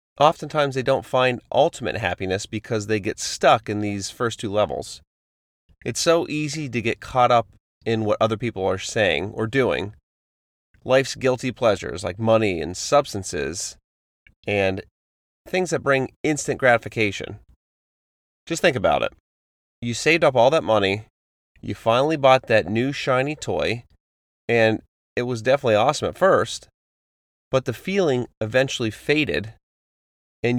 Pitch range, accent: 90-130 Hz, American